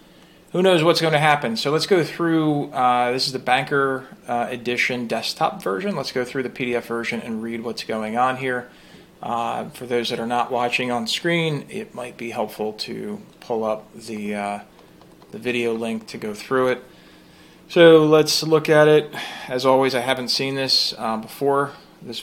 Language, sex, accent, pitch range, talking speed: English, male, American, 120-150 Hz, 190 wpm